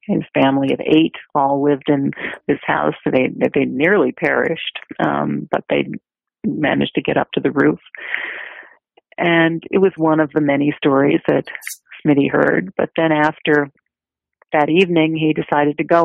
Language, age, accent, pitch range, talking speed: English, 40-59, American, 145-170 Hz, 165 wpm